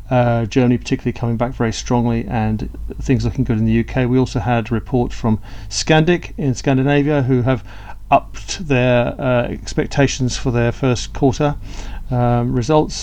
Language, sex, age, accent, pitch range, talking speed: English, male, 40-59, British, 115-135 Hz, 160 wpm